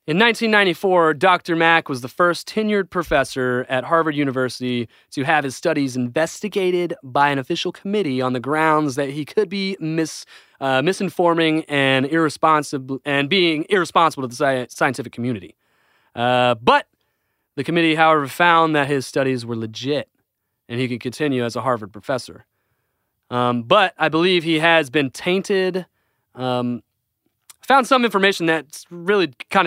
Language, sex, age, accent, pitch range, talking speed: English, male, 30-49, American, 130-170 Hz, 155 wpm